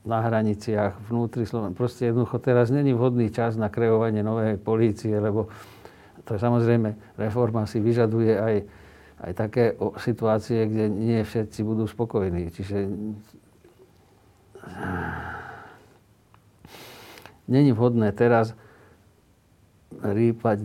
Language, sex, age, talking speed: Slovak, male, 50-69, 105 wpm